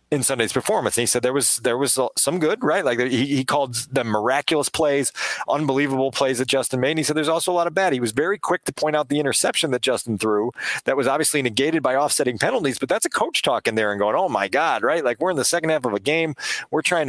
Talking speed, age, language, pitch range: 265 wpm, 40-59, English, 130-155 Hz